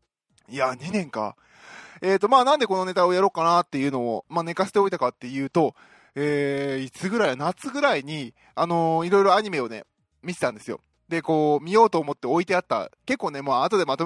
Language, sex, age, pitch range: Japanese, male, 20-39, 145-200 Hz